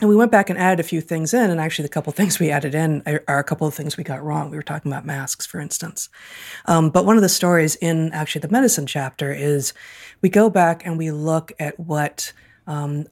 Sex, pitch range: female, 150-190 Hz